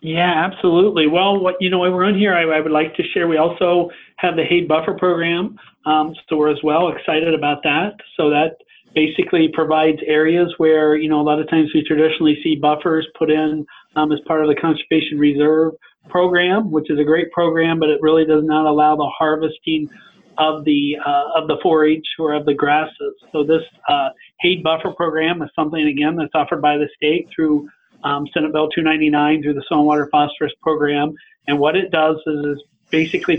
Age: 40-59